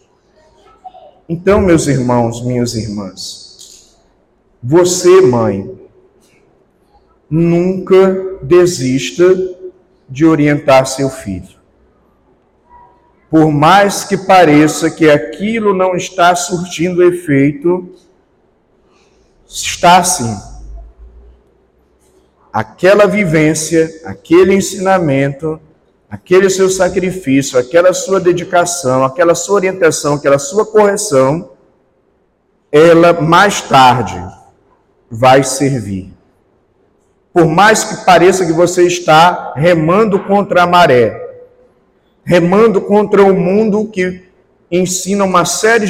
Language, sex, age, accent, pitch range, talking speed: Portuguese, male, 50-69, Brazilian, 140-185 Hz, 85 wpm